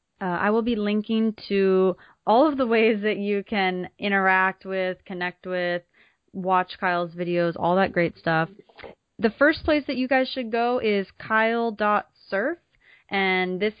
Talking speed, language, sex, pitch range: 155 wpm, English, female, 180-210 Hz